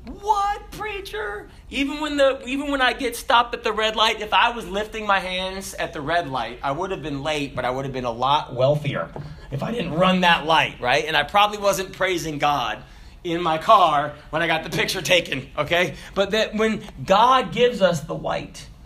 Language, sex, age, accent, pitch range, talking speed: English, male, 30-49, American, 175-275 Hz, 215 wpm